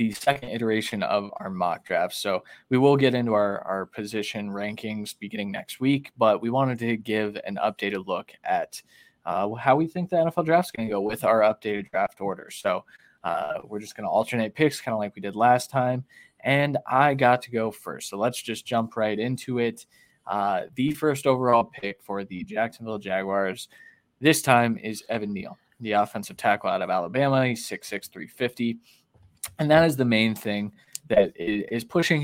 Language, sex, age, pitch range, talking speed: English, male, 20-39, 105-125 Hz, 195 wpm